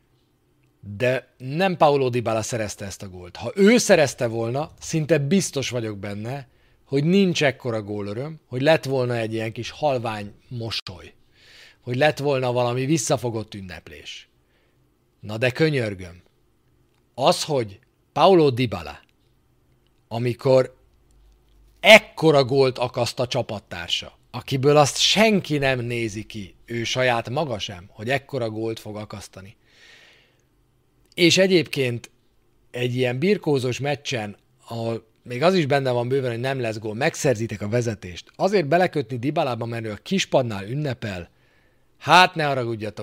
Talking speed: 130 wpm